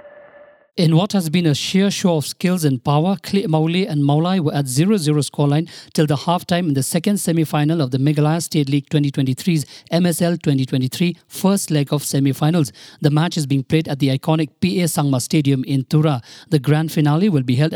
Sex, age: male, 50-69